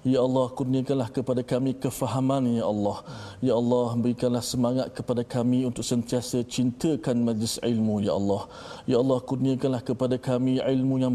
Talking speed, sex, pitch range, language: 150 wpm, male, 120-130 Hz, Malayalam